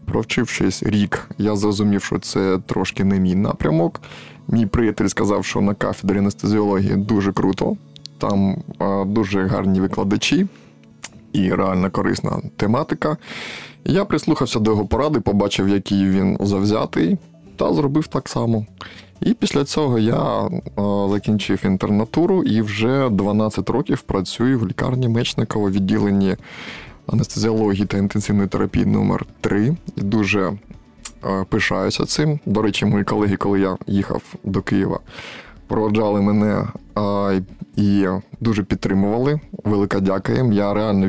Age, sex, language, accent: 20-39, male, Ukrainian, native